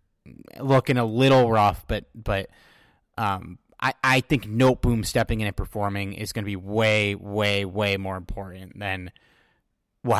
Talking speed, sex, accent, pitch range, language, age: 160 wpm, male, American, 100-125 Hz, English, 30-49